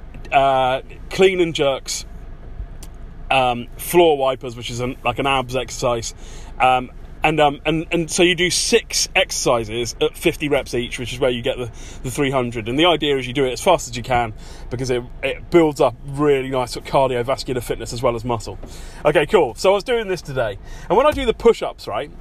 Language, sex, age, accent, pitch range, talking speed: English, male, 30-49, British, 125-175 Hz, 200 wpm